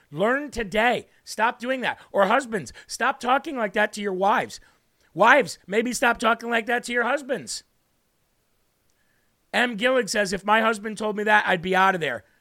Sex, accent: male, American